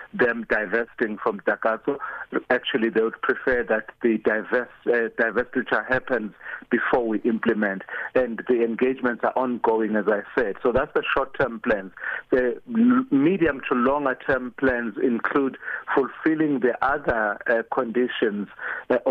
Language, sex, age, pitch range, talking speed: English, male, 50-69, 115-130 Hz, 130 wpm